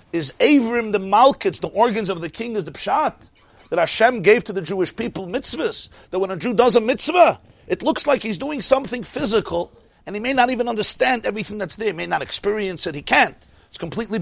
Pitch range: 195-270 Hz